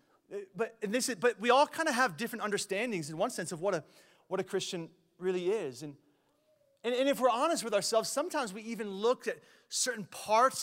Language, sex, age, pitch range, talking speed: English, male, 30-49, 185-245 Hz, 215 wpm